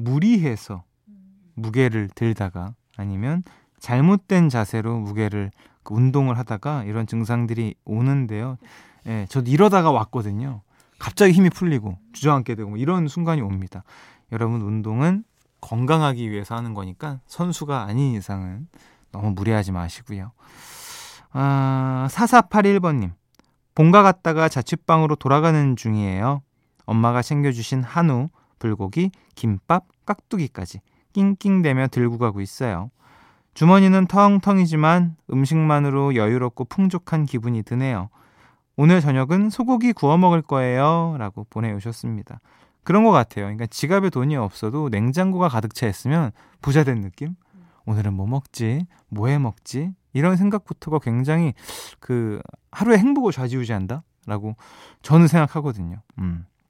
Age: 20-39